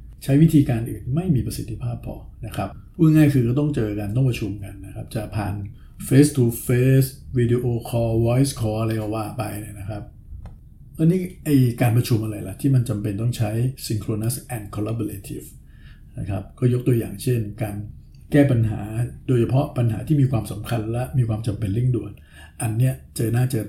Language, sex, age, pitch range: Thai, male, 60-79, 105-125 Hz